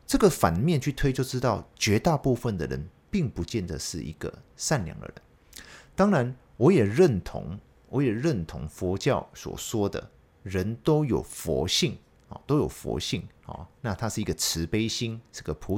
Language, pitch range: Chinese, 85-130 Hz